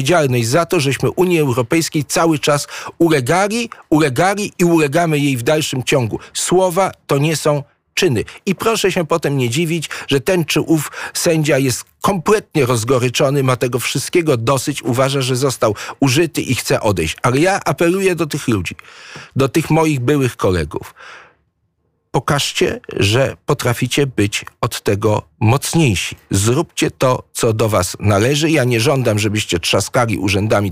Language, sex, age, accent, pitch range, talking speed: Polish, male, 50-69, native, 120-160 Hz, 150 wpm